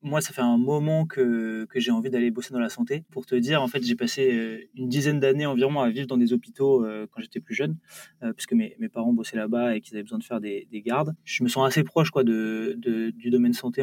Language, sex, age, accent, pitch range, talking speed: French, male, 20-39, French, 115-145 Hz, 260 wpm